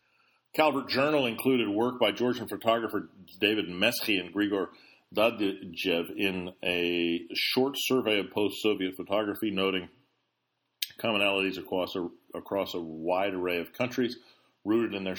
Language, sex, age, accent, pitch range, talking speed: English, male, 40-59, American, 95-115 Hz, 120 wpm